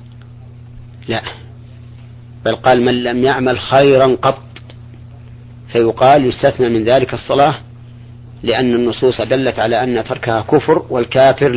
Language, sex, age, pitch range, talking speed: Arabic, male, 40-59, 120-125 Hz, 110 wpm